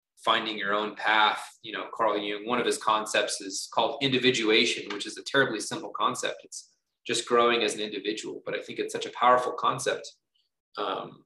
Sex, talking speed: male, 190 wpm